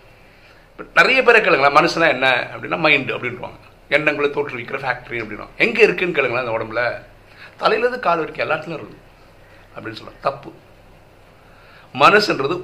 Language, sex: Tamil, male